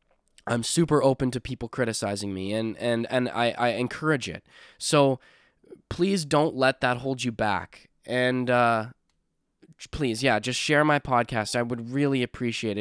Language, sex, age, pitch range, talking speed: English, male, 10-29, 115-140 Hz, 160 wpm